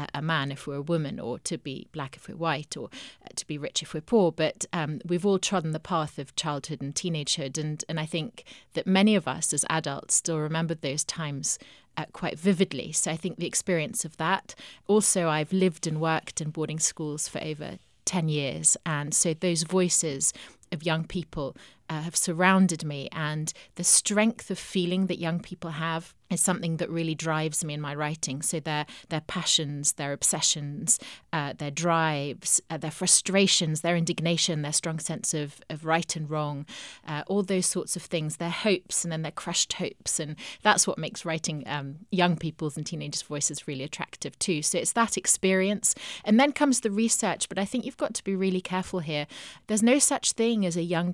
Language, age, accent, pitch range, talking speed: English, 30-49, British, 155-185 Hz, 200 wpm